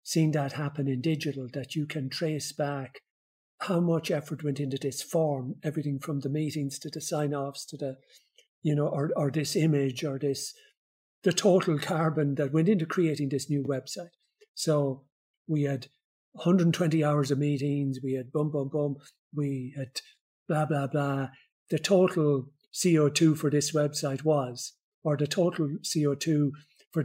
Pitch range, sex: 145-170 Hz, male